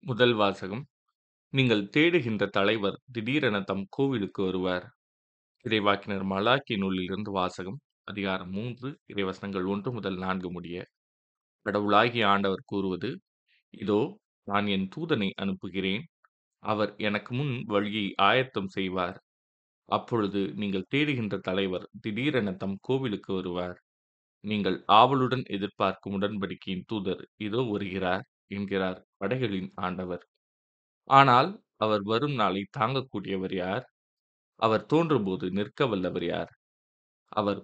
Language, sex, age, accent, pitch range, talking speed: Tamil, male, 20-39, native, 95-110 Hz, 100 wpm